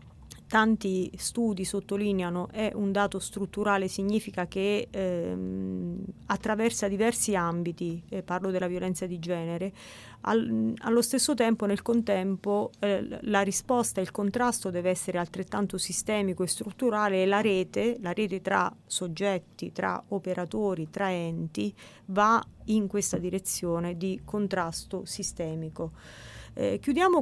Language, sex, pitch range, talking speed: Italian, female, 180-215 Hz, 130 wpm